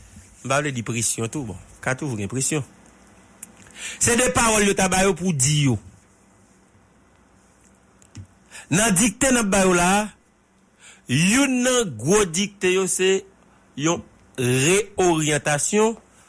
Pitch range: 110-185 Hz